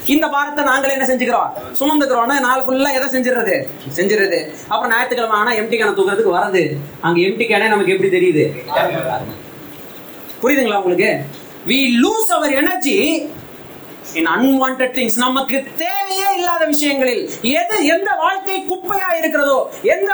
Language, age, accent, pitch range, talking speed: Tamil, 30-49, native, 235-360 Hz, 45 wpm